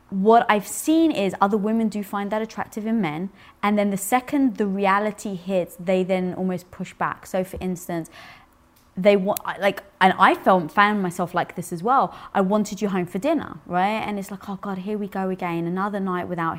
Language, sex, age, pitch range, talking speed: English, female, 20-39, 180-225 Hz, 210 wpm